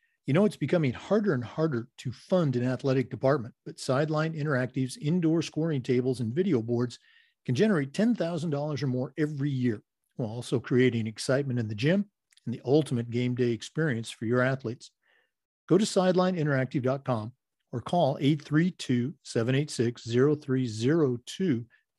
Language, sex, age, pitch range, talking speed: English, male, 50-69, 125-155 Hz, 135 wpm